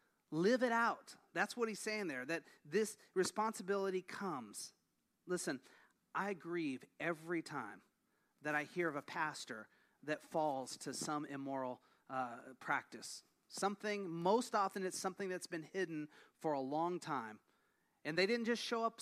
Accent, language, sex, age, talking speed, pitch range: American, English, male, 30-49, 150 wpm, 145-195 Hz